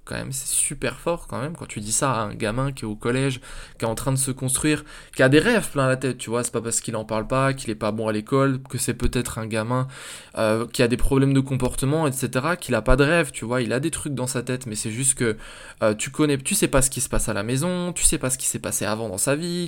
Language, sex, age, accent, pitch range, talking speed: French, male, 20-39, French, 115-145 Hz, 310 wpm